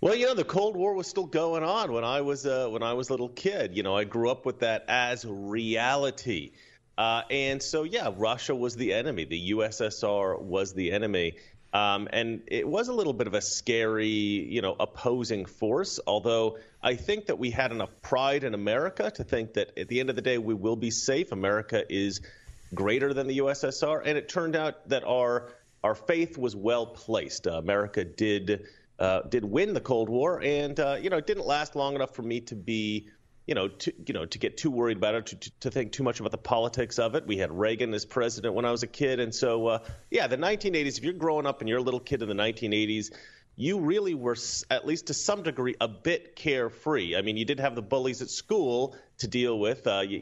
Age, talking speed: 30-49, 225 wpm